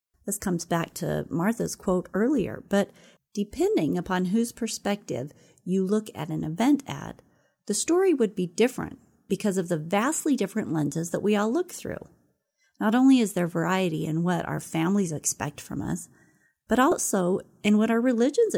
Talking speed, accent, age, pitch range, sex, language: 170 wpm, American, 30-49, 175-235 Hz, female, English